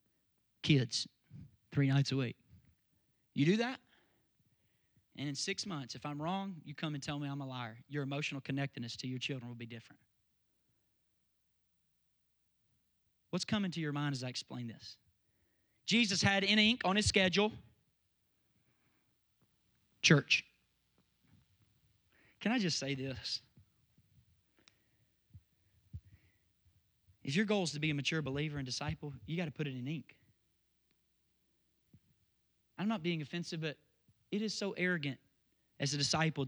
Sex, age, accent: male, 30-49, American